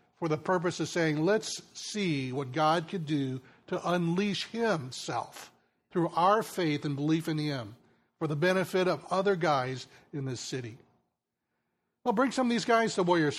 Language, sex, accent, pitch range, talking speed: English, male, American, 145-185 Hz, 170 wpm